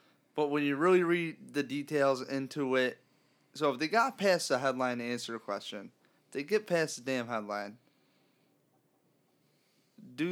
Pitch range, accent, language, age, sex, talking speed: 120-150 Hz, American, English, 20-39, male, 155 wpm